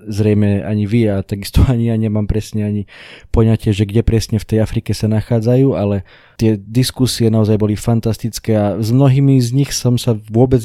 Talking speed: 185 wpm